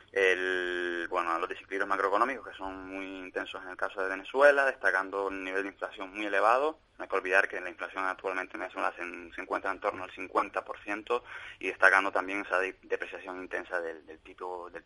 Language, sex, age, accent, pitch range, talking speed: Spanish, male, 20-39, Spanish, 95-105 Hz, 195 wpm